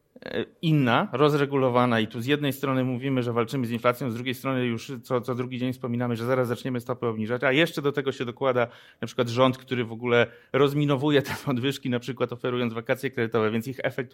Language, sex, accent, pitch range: Polish, male, native, 120-145 Hz